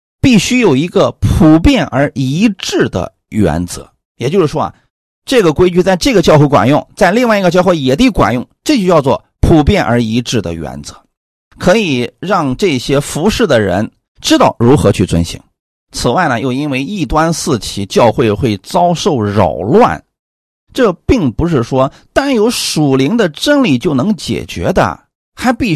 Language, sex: Chinese, male